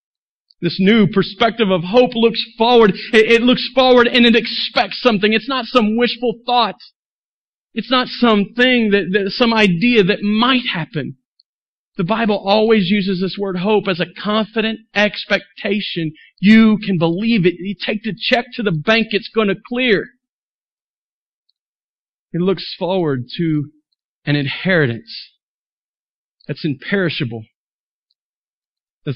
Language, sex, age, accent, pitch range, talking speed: English, male, 40-59, American, 135-210 Hz, 130 wpm